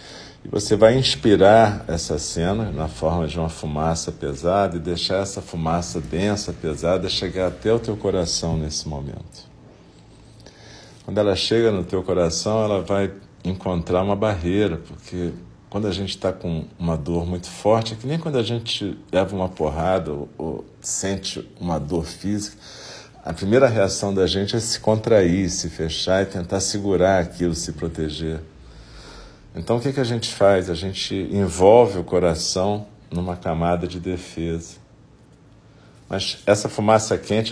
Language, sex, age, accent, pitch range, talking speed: Portuguese, male, 50-69, Brazilian, 85-105 Hz, 155 wpm